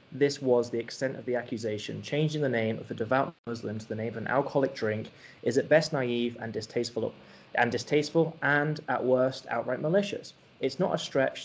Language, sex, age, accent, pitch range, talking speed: English, male, 20-39, British, 115-140 Hz, 200 wpm